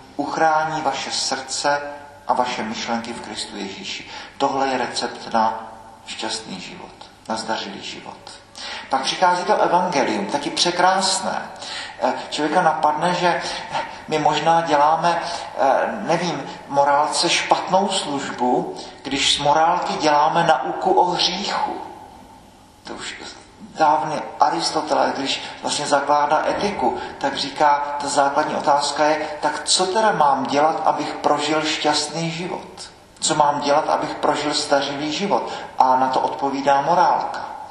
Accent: native